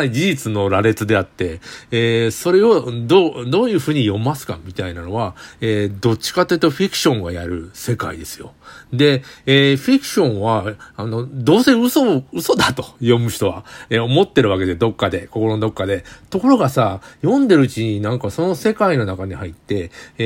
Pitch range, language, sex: 100-145 Hz, Japanese, male